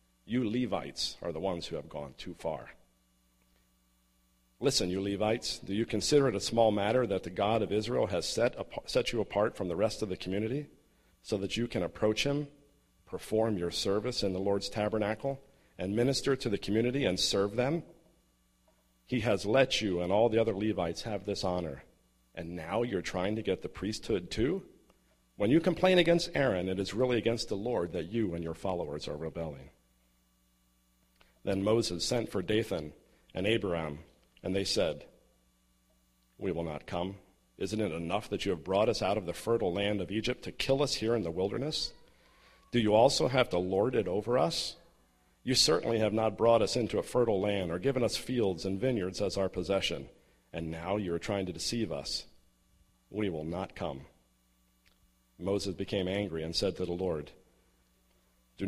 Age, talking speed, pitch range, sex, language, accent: 50-69, 185 wpm, 75-110 Hz, male, English, American